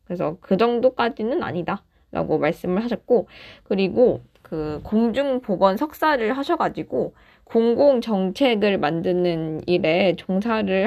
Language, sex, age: Korean, female, 20-39